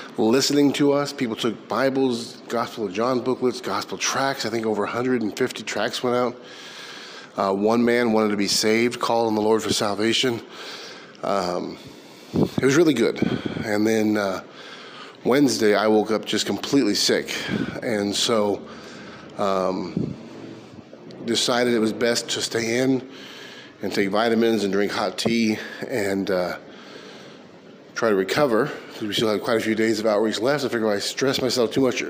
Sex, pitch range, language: male, 105-120 Hz, English